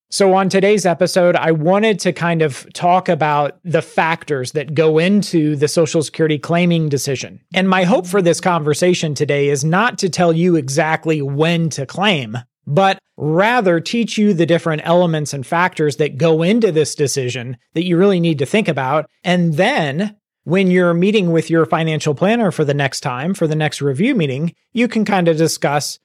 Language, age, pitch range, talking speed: English, 40-59, 155-185 Hz, 185 wpm